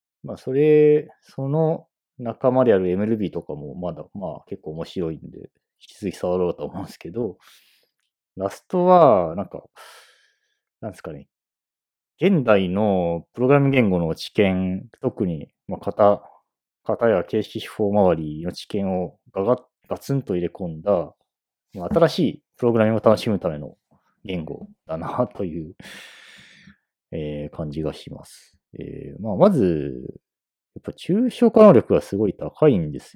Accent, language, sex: native, Japanese, male